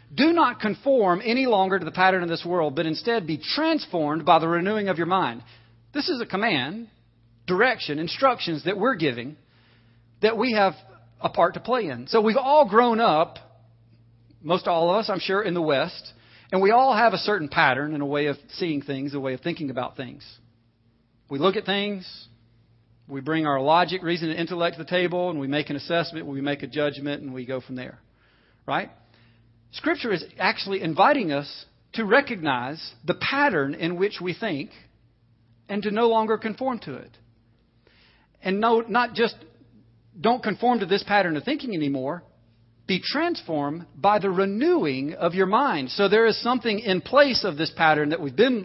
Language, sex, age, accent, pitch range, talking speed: English, male, 40-59, American, 135-205 Hz, 185 wpm